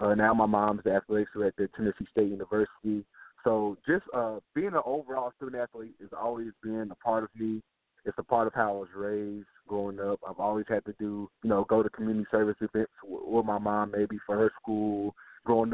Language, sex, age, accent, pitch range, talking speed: English, male, 20-39, American, 105-115 Hz, 215 wpm